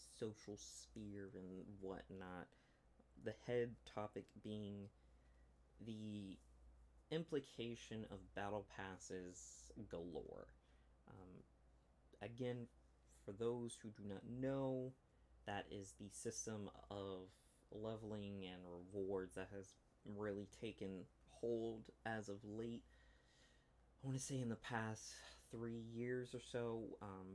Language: English